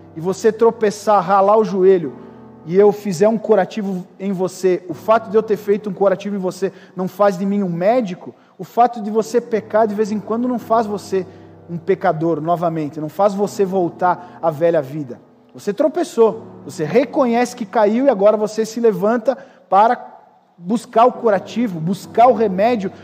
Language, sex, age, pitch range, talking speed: Portuguese, male, 40-59, 195-260 Hz, 180 wpm